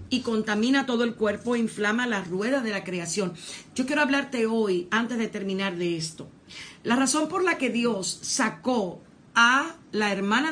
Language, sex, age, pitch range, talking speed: English, female, 50-69, 195-255 Hz, 175 wpm